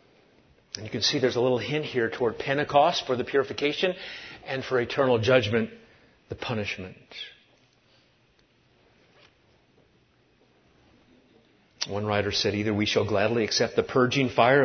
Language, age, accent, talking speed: English, 40-59, American, 125 wpm